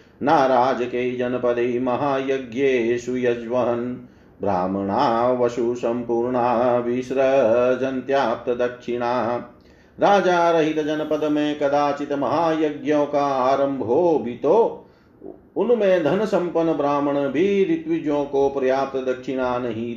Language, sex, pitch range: Hindi, male, 120-150 Hz